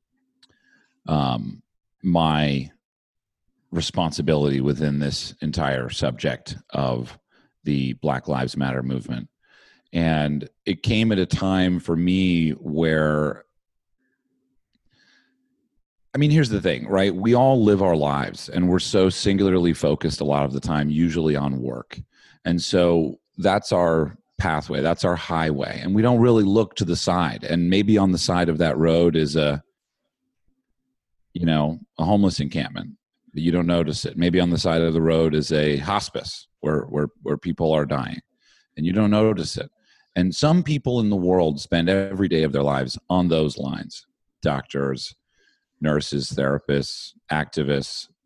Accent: American